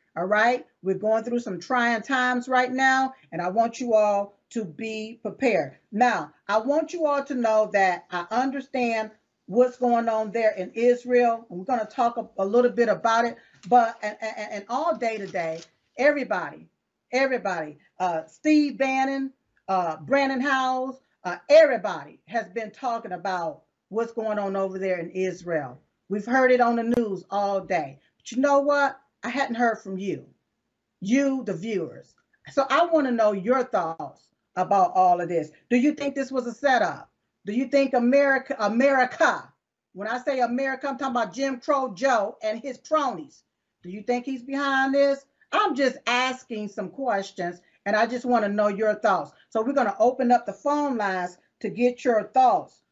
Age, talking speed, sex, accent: 40-59, 175 wpm, female, American